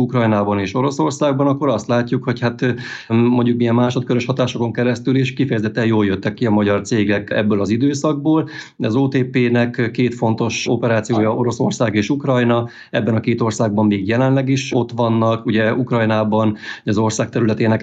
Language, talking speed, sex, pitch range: Hungarian, 155 wpm, male, 105-125 Hz